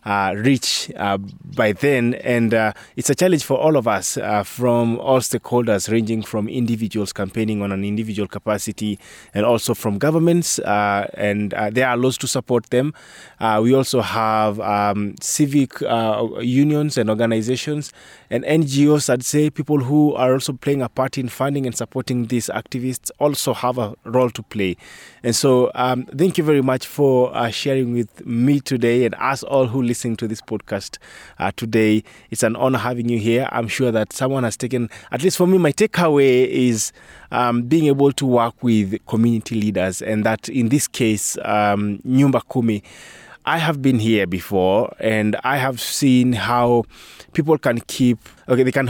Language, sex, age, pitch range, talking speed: English, male, 20-39, 105-130 Hz, 180 wpm